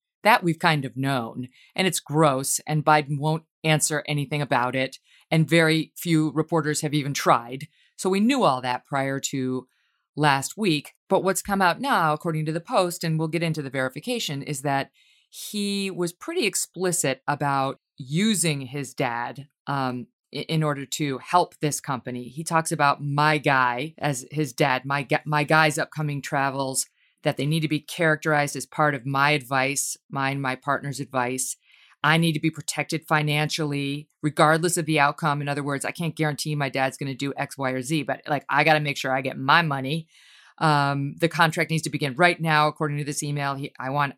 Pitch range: 140-160 Hz